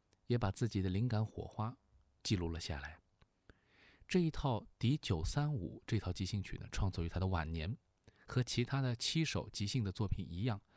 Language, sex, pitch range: Chinese, male, 90-125 Hz